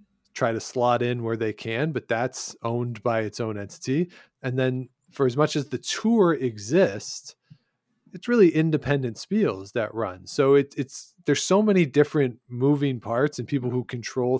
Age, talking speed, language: 40-59, 170 wpm, English